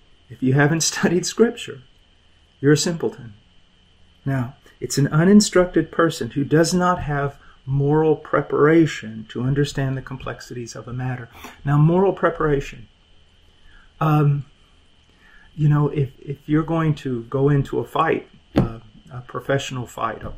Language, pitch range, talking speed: English, 115-155 Hz, 135 wpm